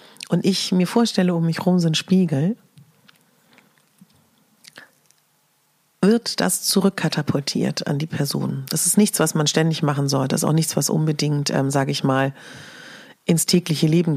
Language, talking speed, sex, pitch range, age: German, 155 wpm, female, 155-205 Hz, 40-59